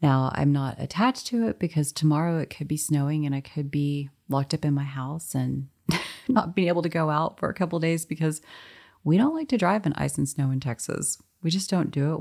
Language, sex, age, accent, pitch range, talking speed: English, female, 30-49, American, 135-160 Hz, 240 wpm